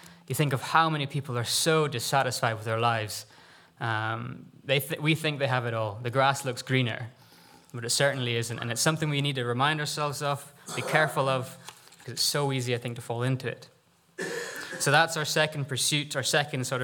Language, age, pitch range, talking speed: English, 20-39, 125-150 Hz, 210 wpm